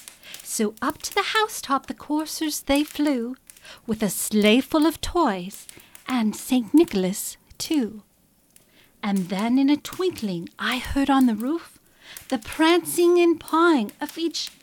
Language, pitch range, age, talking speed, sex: English, 225-315 Hz, 40-59, 145 wpm, female